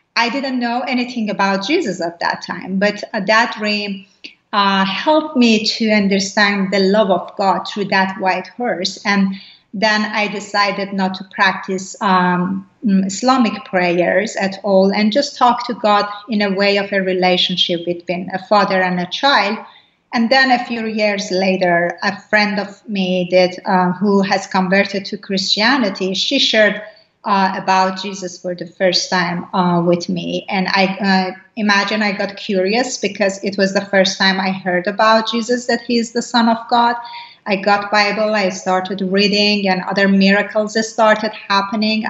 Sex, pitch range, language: female, 190-215 Hz, English